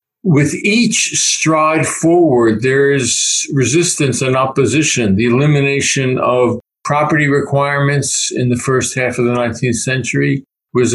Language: English